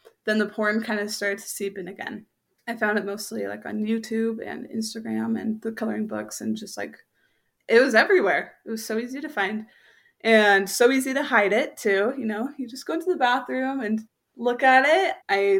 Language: English